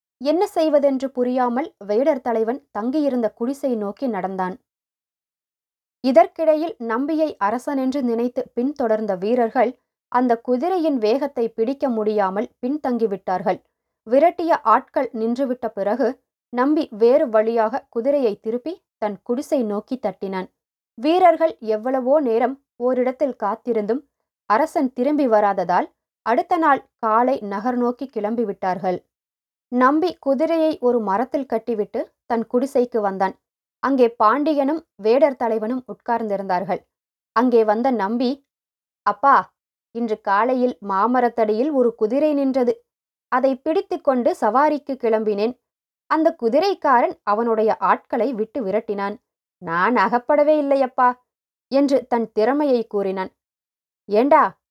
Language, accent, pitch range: English, Indian, 220-280 Hz